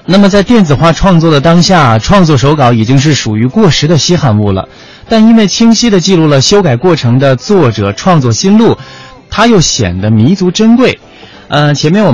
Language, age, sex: Chinese, 20-39, male